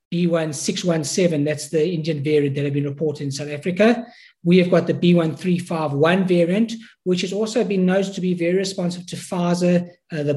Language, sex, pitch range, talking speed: English, male, 160-195 Hz, 180 wpm